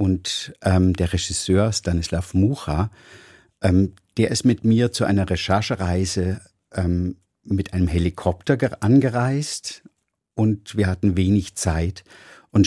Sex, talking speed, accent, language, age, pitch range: male, 120 wpm, German, German, 50-69, 90-105 Hz